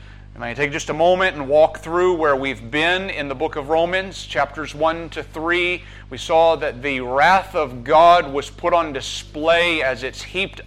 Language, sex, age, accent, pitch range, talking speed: English, male, 40-59, American, 140-185 Hz, 195 wpm